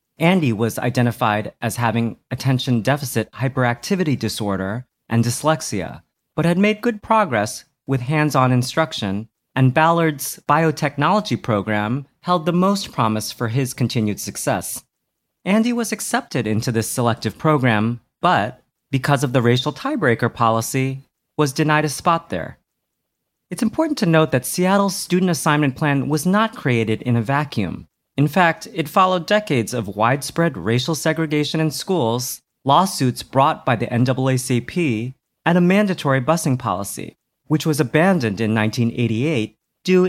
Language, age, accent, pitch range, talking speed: English, 40-59, American, 120-165 Hz, 135 wpm